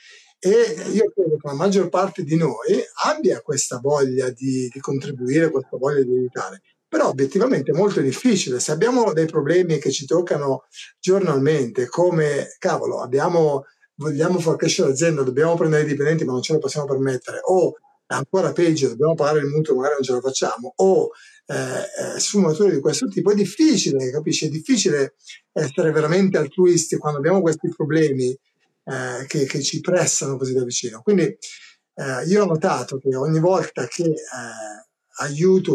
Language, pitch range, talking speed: Italian, 135-180 Hz, 165 wpm